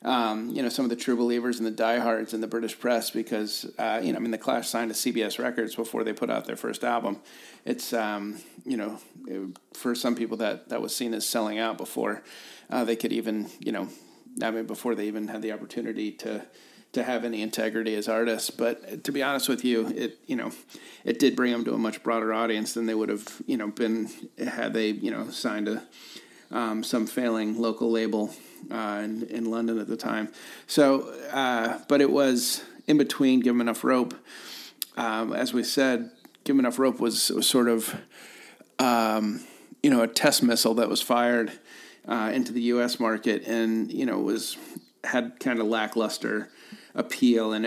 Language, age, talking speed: English, 40-59, 205 wpm